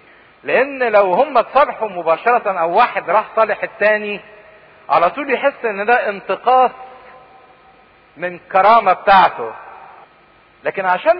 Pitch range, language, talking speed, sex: 200-255 Hz, English, 115 wpm, male